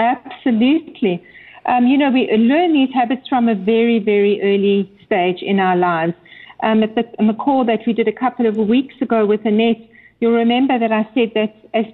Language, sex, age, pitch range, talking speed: English, female, 50-69, 215-255 Hz, 190 wpm